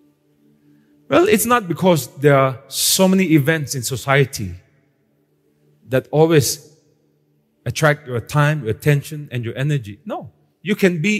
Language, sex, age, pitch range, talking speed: English, male, 30-49, 110-165 Hz, 135 wpm